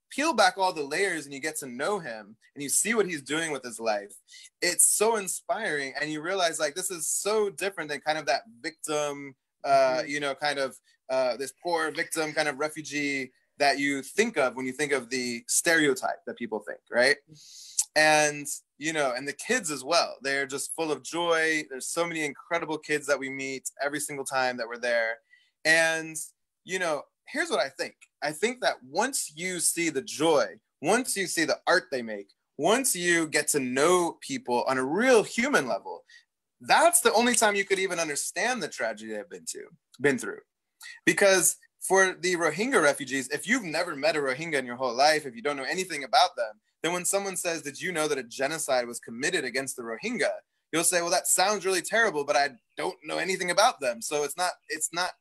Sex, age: male, 20-39